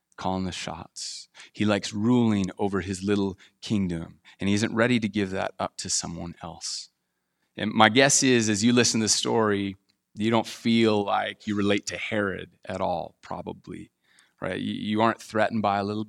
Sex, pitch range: male, 90-110 Hz